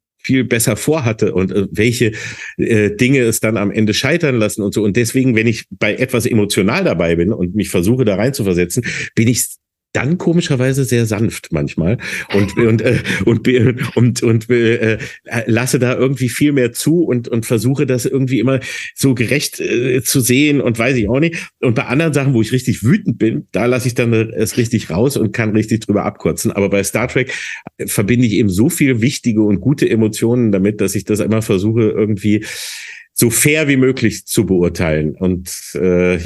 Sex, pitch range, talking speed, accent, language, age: male, 100-125 Hz, 195 wpm, German, German, 50-69